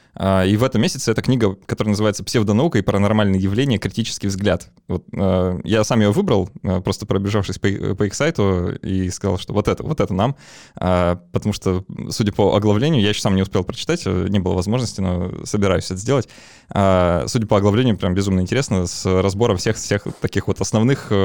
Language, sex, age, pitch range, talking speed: Russian, male, 20-39, 95-115 Hz, 170 wpm